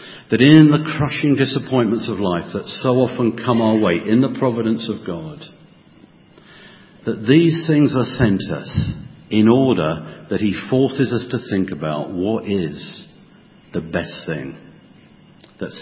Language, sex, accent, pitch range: English, male, British, 105-150 Hz